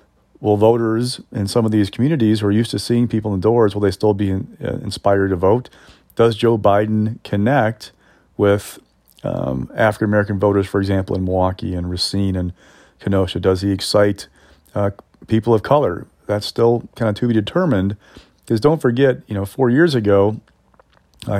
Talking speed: 170 wpm